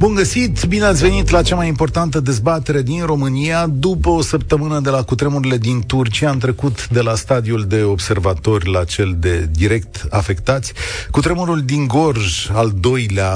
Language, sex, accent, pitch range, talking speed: Romanian, male, native, 100-140 Hz, 165 wpm